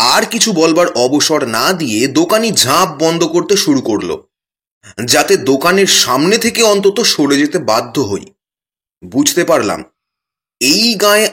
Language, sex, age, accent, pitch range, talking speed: Bengali, male, 30-49, native, 160-230 Hz, 125 wpm